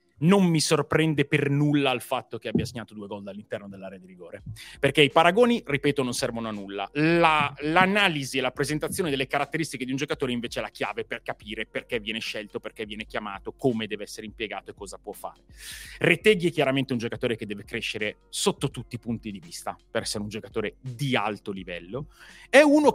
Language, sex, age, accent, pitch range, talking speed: Italian, male, 30-49, native, 125-165 Hz, 200 wpm